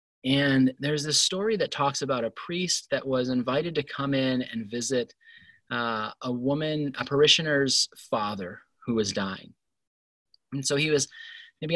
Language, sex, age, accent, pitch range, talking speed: English, male, 20-39, American, 125-160 Hz, 160 wpm